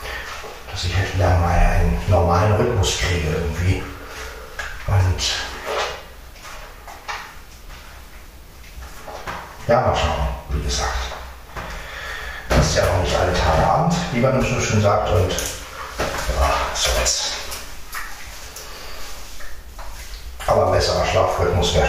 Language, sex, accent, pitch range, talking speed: German, male, German, 75-105 Hz, 110 wpm